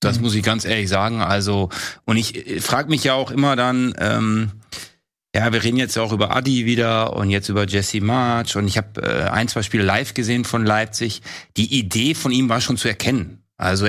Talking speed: 220 wpm